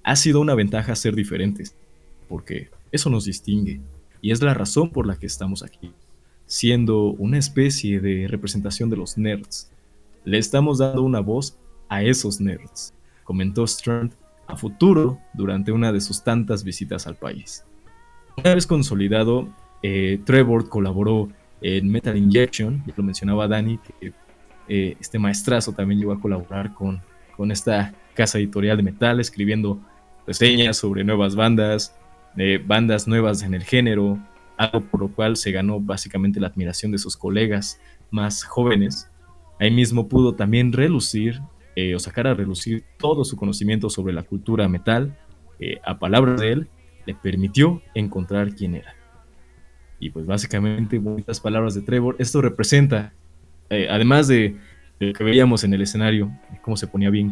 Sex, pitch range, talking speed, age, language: male, 95-115 Hz, 155 wpm, 20-39, Spanish